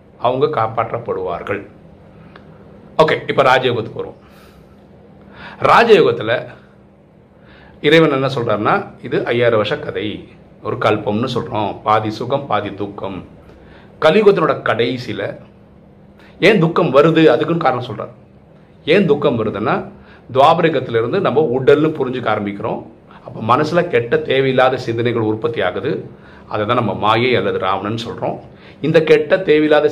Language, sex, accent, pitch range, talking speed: Tamil, male, native, 110-150 Hz, 105 wpm